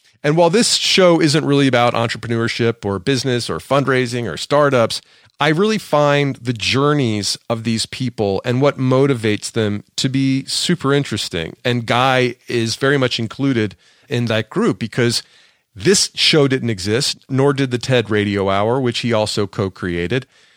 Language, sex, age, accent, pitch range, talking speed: English, male, 40-59, American, 110-135 Hz, 160 wpm